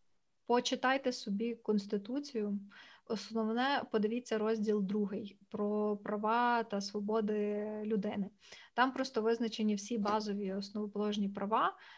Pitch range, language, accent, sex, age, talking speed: 210-245 Hz, Ukrainian, native, female, 20-39, 100 wpm